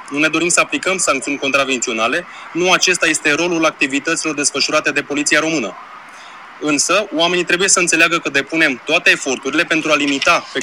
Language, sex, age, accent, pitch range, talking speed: Romanian, male, 20-39, native, 140-170 Hz, 165 wpm